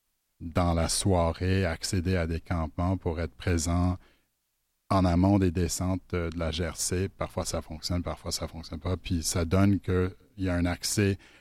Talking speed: 175 wpm